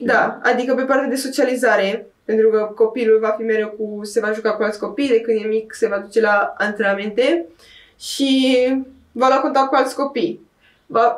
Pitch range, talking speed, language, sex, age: 215-245 Hz, 195 wpm, Romanian, female, 20-39